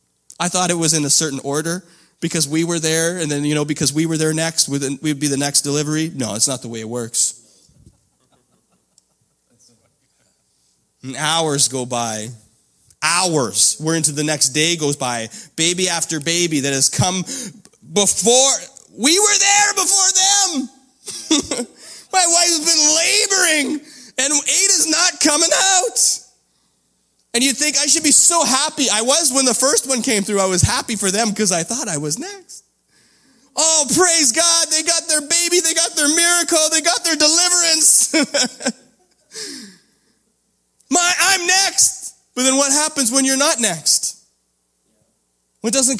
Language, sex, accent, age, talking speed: English, male, American, 30-49, 160 wpm